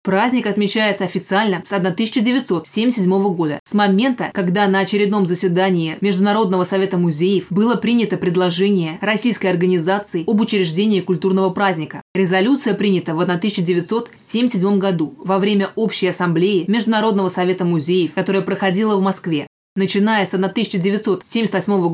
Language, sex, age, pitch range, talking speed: Russian, female, 20-39, 185-210 Hz, 120 wpm